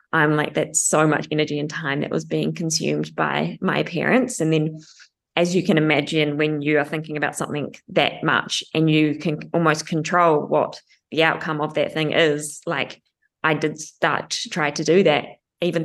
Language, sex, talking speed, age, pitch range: English, female, 195 wpm, 20-39, 150-170 Hz